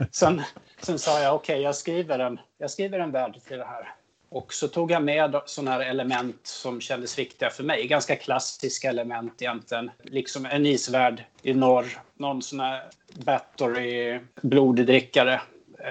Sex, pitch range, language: male, 125-140 Hz, Swedish